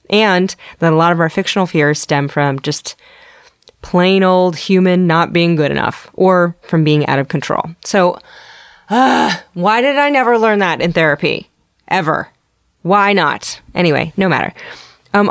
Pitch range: 150-195 Hz